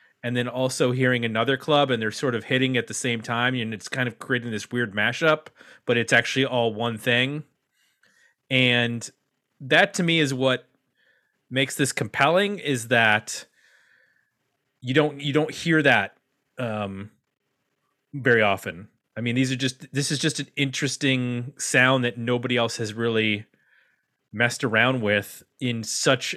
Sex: male